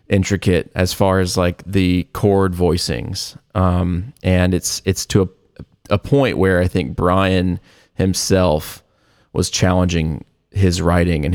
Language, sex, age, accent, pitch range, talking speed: English, male, 20-39, American, 90-100 Hz, 135 wpm